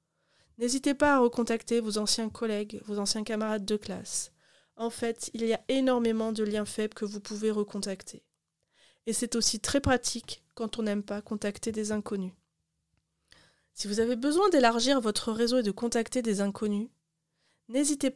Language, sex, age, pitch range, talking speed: French, female, 20-39, 210-240 Hz, 165 wpm